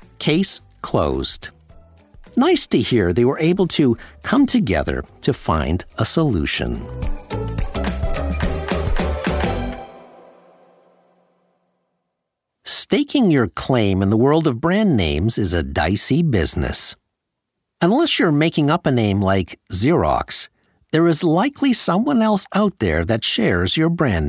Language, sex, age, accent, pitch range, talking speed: English, male, 50-69, American, 105-175 Hz, 115 wpm